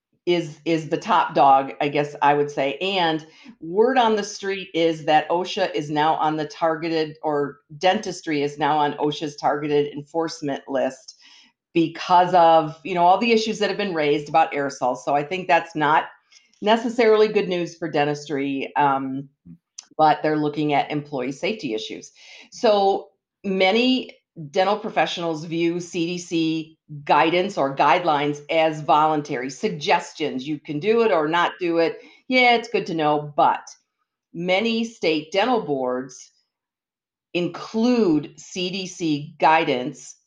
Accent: American